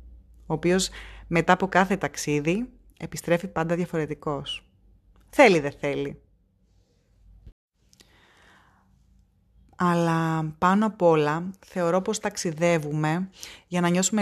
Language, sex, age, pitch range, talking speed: Greek, female, 20-39, 150-200 Hz, 95 wpm